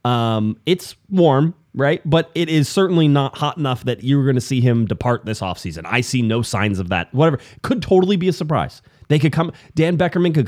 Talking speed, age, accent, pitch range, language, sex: 220 wpm, 30-49, American, 110-145 Hz, English, male